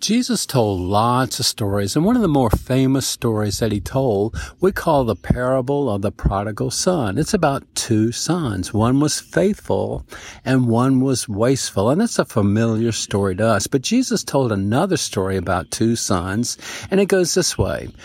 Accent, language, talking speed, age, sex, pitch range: American, English, 180 wpm, 50-69, male, 105-145 Hz